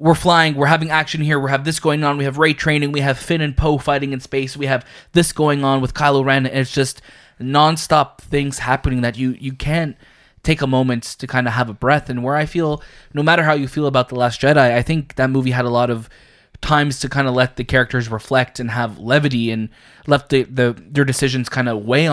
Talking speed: 245 wpm